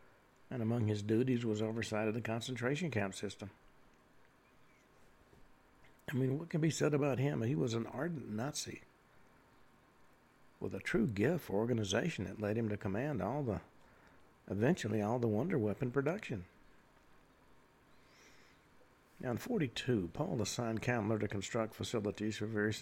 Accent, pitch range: American, 105-130 Hz